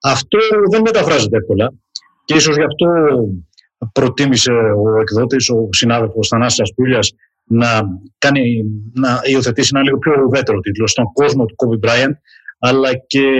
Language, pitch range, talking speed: Greek, 115-155 Hz, 135 wpm